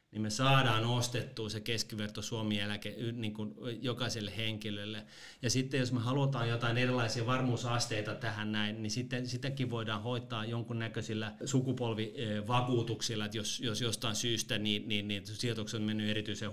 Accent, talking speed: native, 145 wpm